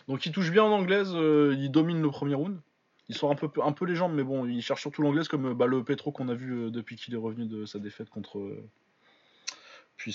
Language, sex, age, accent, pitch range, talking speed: French, male, 20-39, French, 115-145 Hz, 260 wpm